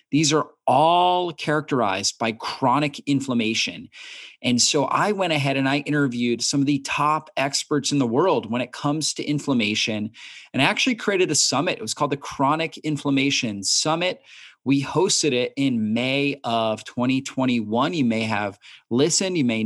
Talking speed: 165 wpm